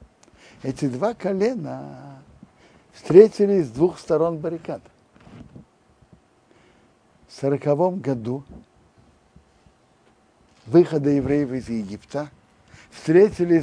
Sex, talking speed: male, 70 wpm